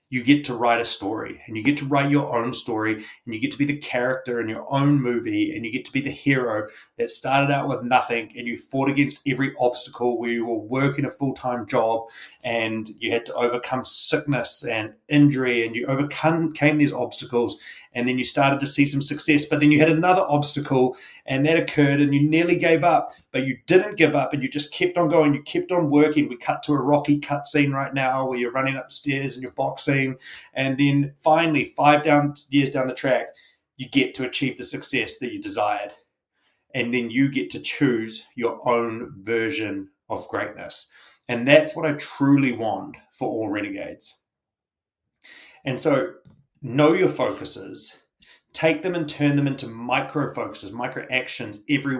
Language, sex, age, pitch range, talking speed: English, male, 30-49, 125-150 Hz, 195 wpm